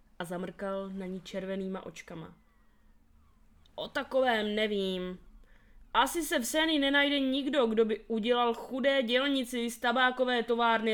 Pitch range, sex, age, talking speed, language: 180-225 Hz, female, 20-39, 125 wpm, Czech